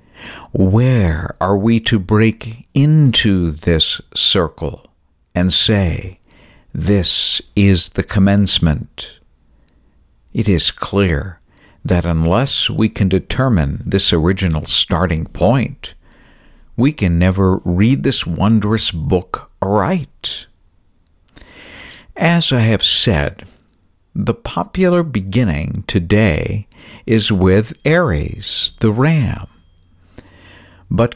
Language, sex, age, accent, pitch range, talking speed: English, male, 60-79, American, 90-115 Hz, 90 wpm